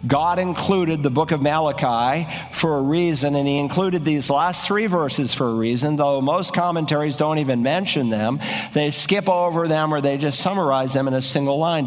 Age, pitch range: 50-69, 140-180 Hz